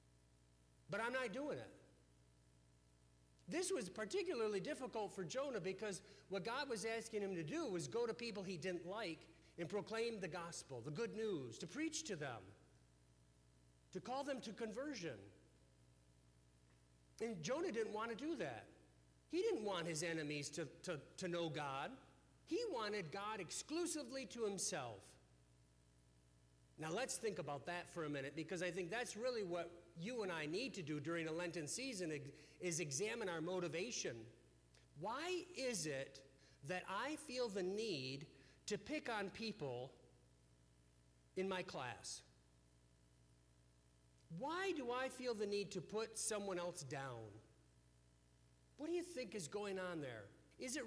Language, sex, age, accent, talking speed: English, male, 50-69, American, 150 wpm